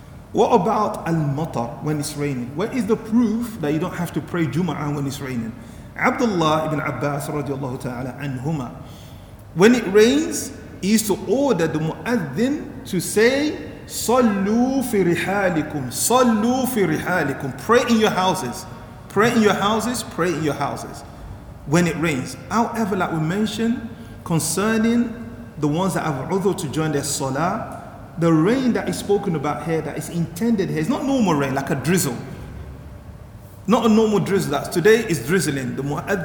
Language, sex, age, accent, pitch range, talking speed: English, male, 40-59, Nigerian, 150-220 Hz, 155 wpm